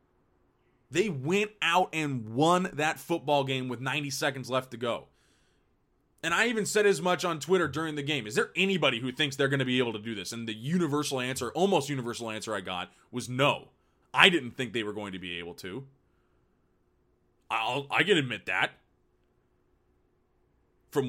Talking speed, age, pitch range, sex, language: 185 wpm, 20-39, 115-150 Hz, male, English